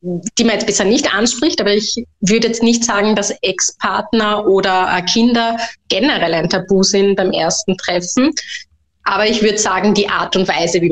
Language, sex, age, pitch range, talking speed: German, female, 20-39, 180-215 Hz, 175 wpm